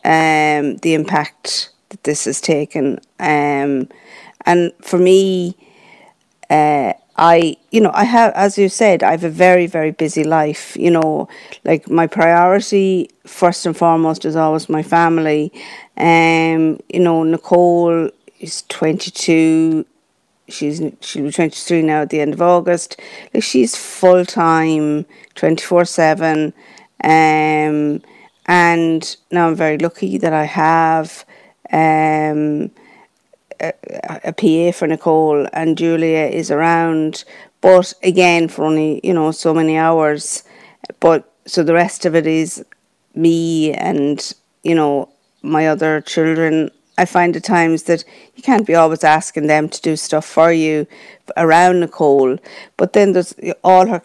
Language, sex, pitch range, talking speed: English, female, 155-175 Hz, 145 wpm